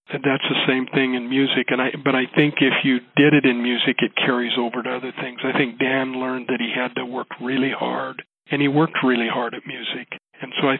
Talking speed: 250 wpm